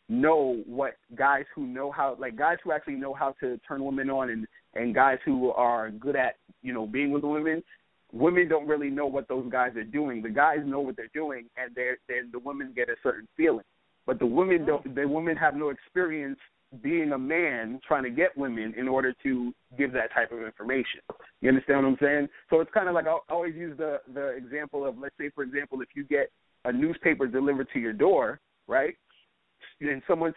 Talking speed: 215 wpm